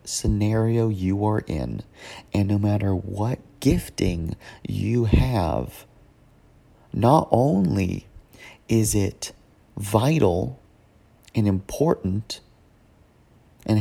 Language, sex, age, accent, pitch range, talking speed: English, male, 30-49, American, 100-120 Hz, 85 wpm